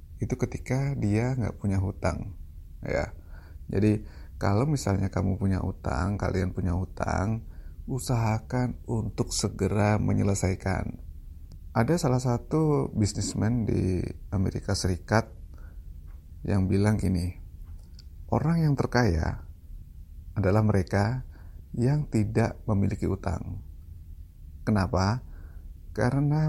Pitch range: 85-115 Hz